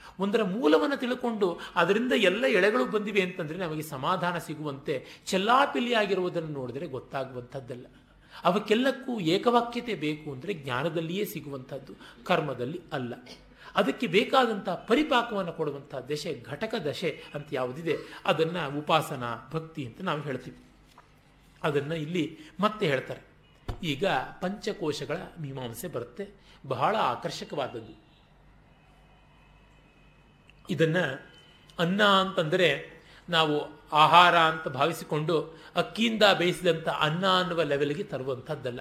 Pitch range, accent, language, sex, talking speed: 150-210 Hz, native, Kannada, male, 95 wpm